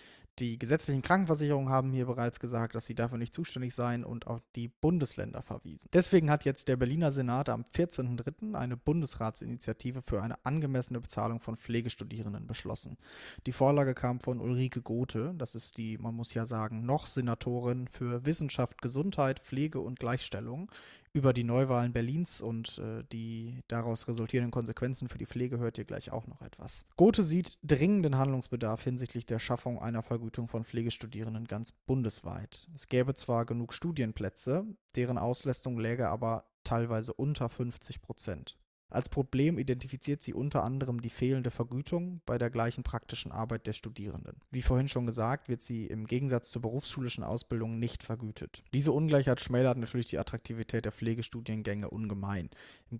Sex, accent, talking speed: male, German, 155 wpm